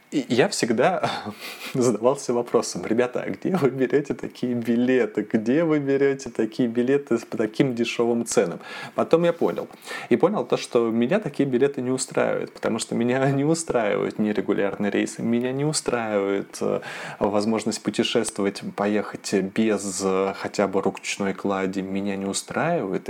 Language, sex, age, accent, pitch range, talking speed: Russian, male, 20-39, native, 100-125 Hz, 140 wpm